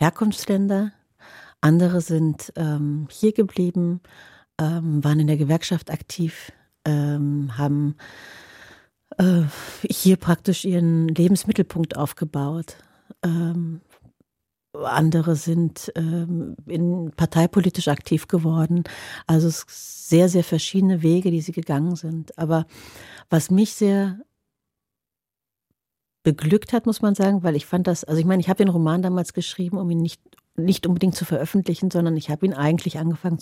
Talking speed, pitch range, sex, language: 125 wpm, 160-185 Hz, female, German